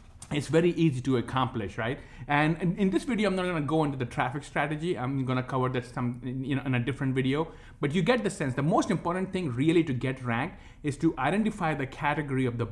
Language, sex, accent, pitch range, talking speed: English, male, Indian, 125-155 Hz, 230 wpm